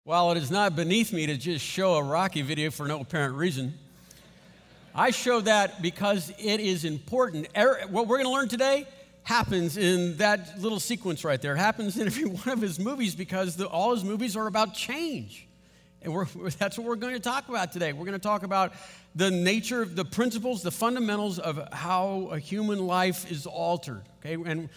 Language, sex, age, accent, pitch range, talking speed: English, male, 50-69, American, 165-215 Hz, 200 wpm